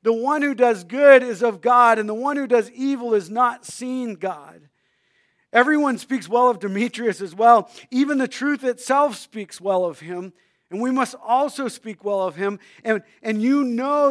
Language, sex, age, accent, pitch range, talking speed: English, male, 50-69, American, 200-270 Hz, 190 wpm